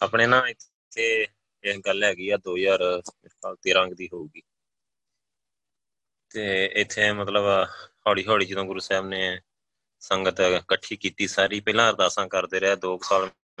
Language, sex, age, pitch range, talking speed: Punjabi, male, 20-39, 95-110 Hz, 135 wpm